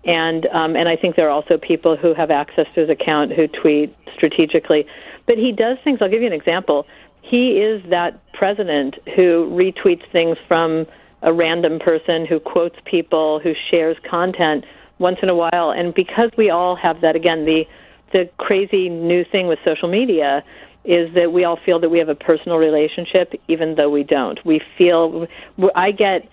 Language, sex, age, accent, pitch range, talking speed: English, female, 50-69, American, 160-180 Hz, 190 wpm